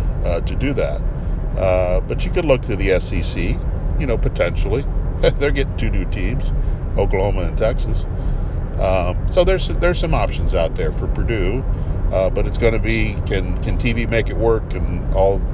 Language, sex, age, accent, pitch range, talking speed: English, male, 50-69, American, 85-105 Hz, 180 wpm